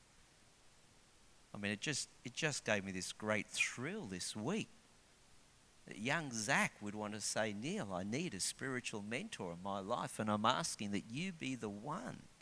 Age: 50-69